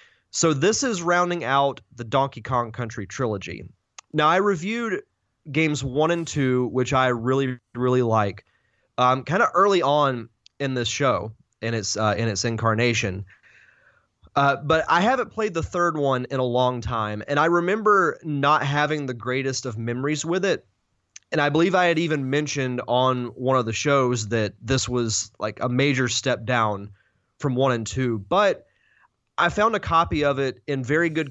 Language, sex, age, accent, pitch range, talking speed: English, male, 20-39, American, 120-155 Hz, 175 wpm